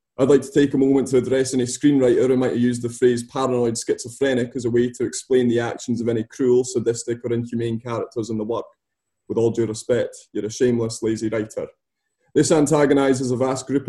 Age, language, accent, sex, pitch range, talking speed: 20-39, English, British, male, 115-135 Hz, 210 wpm